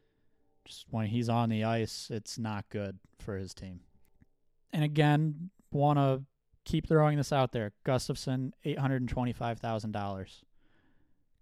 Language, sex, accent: English, male, American